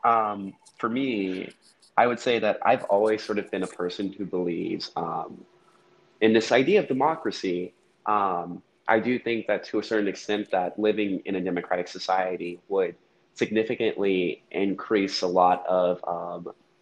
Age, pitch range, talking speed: 20-39, 90-110 Hz, 155 wpm